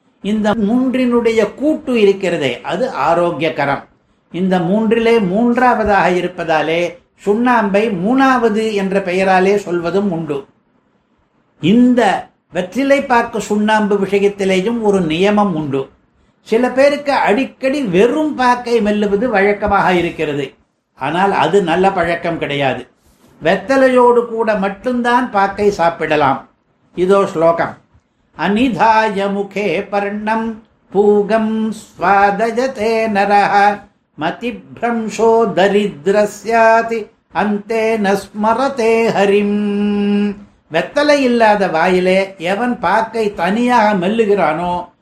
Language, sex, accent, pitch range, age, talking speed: Tamil, male, native, 190-230 Hz, 60-79, 70 wpm